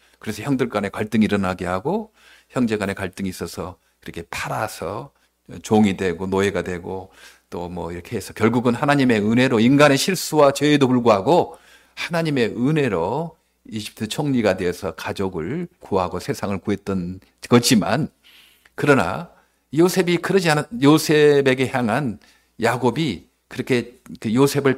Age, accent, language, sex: 50-69, native, Korean, male